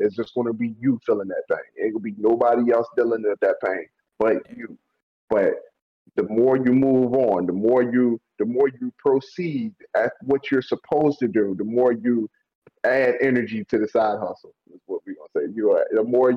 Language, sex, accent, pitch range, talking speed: English, male, American, 125-165 Hz, 195 wpm